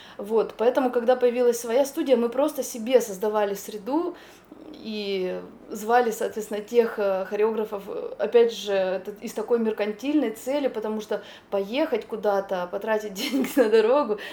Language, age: Russian, 20-39